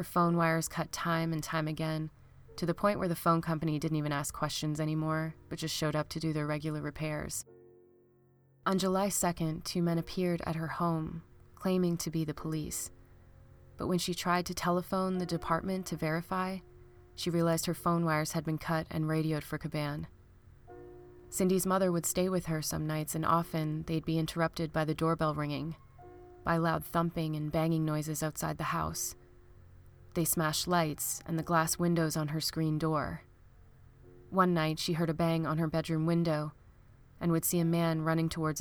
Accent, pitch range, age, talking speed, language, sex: American, 145-170 Hz, 20-39, 185 wpm, English, female